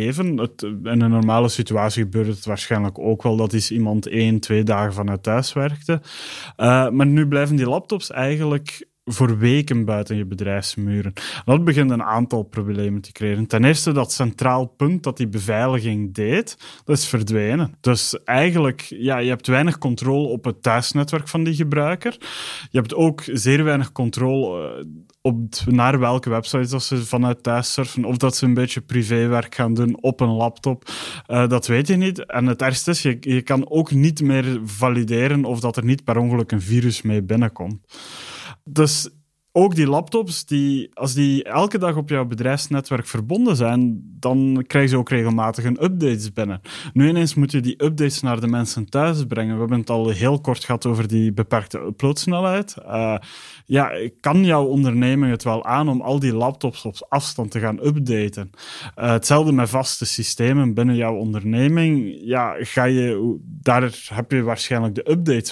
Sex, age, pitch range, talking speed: male, 30-49, 115-140 Hz, 175 wpm